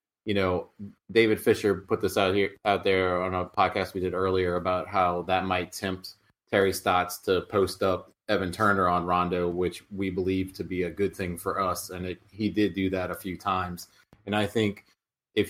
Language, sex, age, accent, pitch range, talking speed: English, male, 20-39, American, 90-95 Hz, 200 wpm